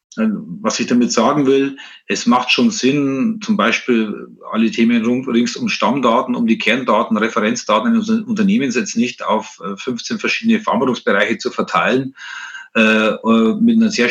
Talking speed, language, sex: 150 wpm, German, male